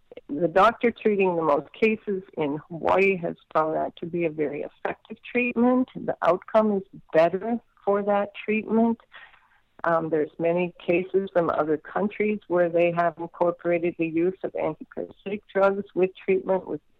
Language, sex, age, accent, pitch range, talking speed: English, female, 50-69, American, 155-195 Hz, 150 wpm